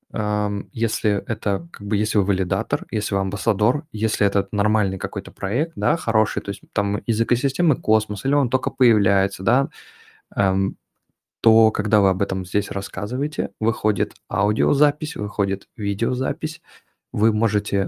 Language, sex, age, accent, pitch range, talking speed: Russian, male, 20-39, native, 100-125 Hz, 145 wpm